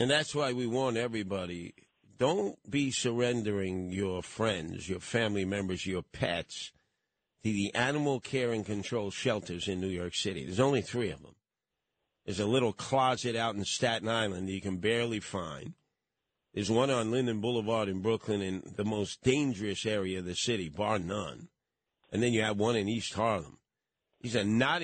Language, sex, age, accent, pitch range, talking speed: English, male, 50-69, American, 105-140 Hz, 175 wpm